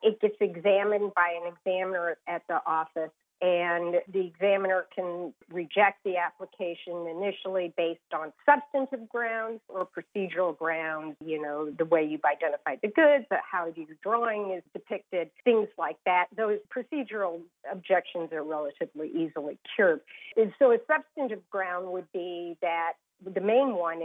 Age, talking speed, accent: 50-69, 145 wpm, American